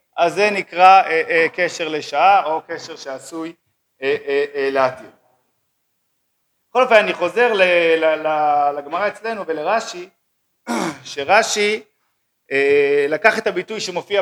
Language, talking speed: Hebrew, 115 wpm